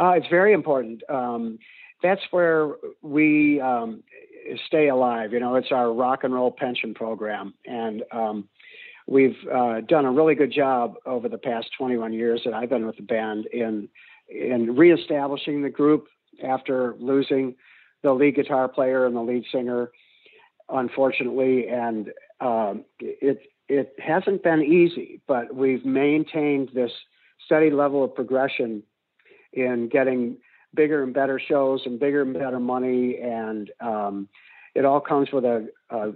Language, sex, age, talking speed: English, male, 50-69, 150 wpm